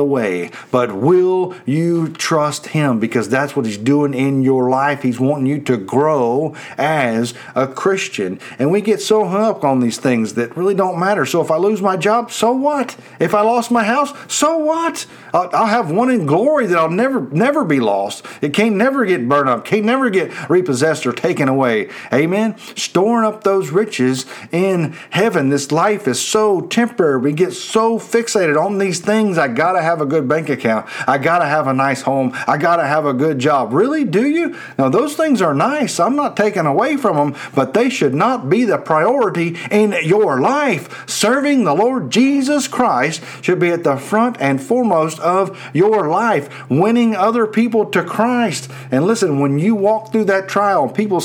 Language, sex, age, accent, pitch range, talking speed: English, male, 40-59, American, 140-225 Hz, 195 wpm